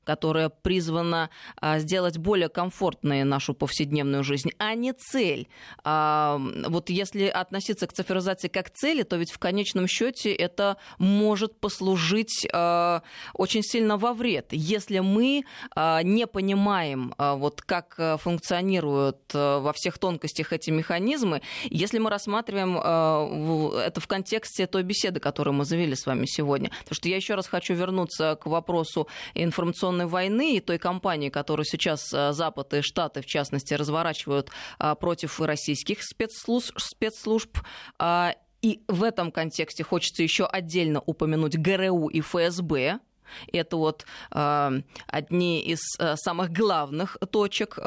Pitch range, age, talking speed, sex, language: 155-195 Hz, 20-39, 125 wpm, female, Russian